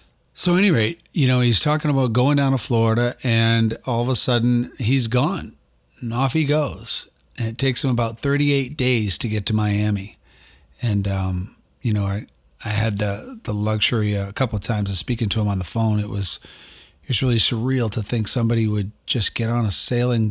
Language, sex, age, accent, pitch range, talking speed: English, male, 40-59, American, 110-125 Hz, 210 wpm